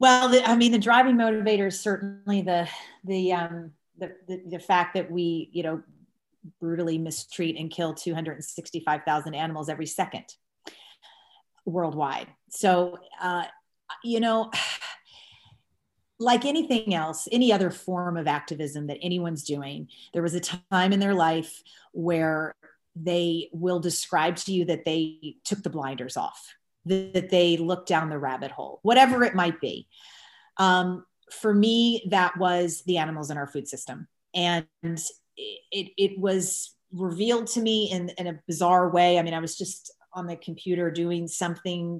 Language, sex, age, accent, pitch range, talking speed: English, female, 30-49, American, 165-195 Hz, 150 wpm